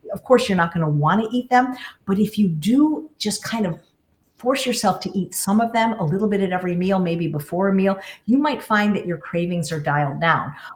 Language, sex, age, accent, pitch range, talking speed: English, female, 50-69, American, 160-200 Hz, 240 wpm